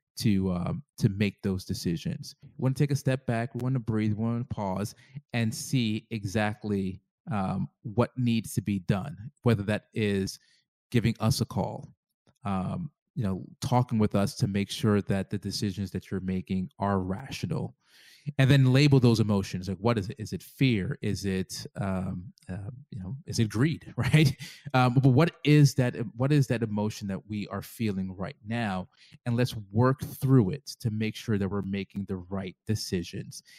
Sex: male